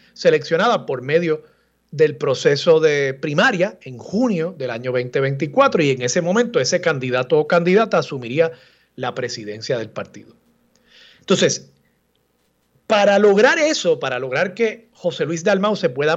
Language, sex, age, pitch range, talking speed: Spanish, male, 40-59, 140-220 Hz, 135 wpm